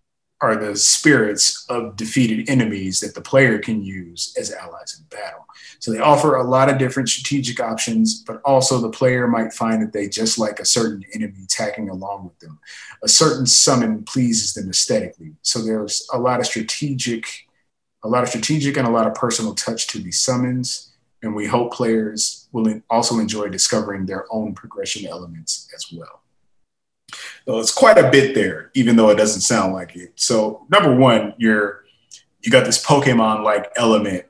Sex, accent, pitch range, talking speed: male, American, 105-125 Hz, 175 wpm